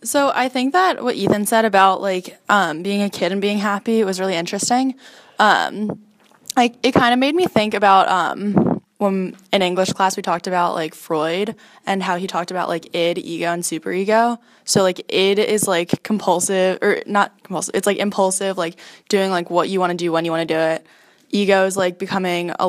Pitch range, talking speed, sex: 180-215 Hz, 210 wpm, female